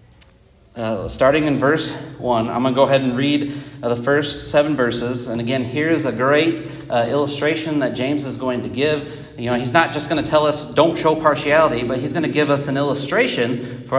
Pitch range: 120-150 Hz